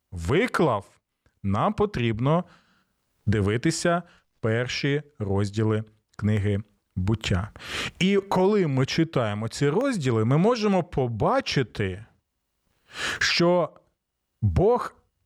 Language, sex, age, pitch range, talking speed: Ukrainian, male, 40-59, 105-170 Hz, 75 wpm